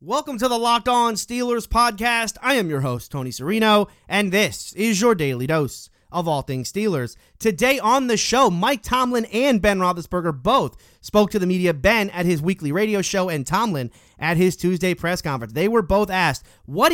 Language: English